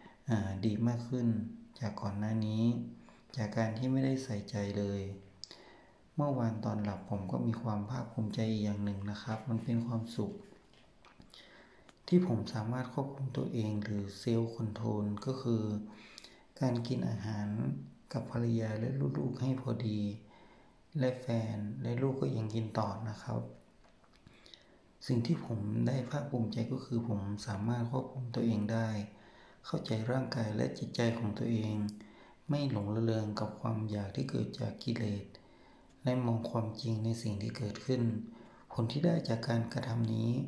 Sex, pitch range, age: male, 110-120 Hz, 60-79